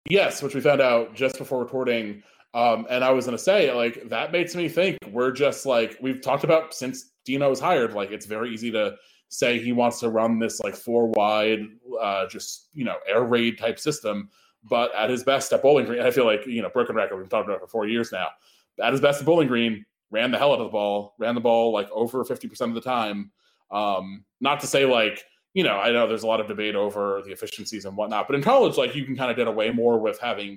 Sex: male